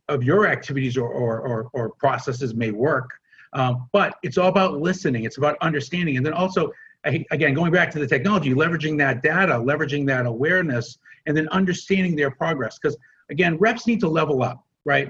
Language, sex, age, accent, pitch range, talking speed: English, male, 50-69, American, 130-175 Hz, 180 wpm